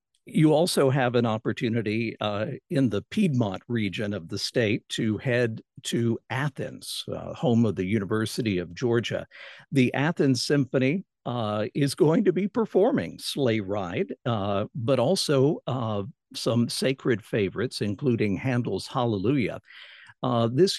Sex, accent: male, American